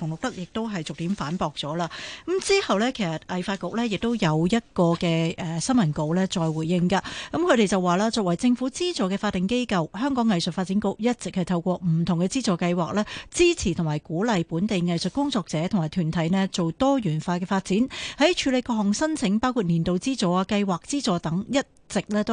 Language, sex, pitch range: Chinese, female, 175-225 Hz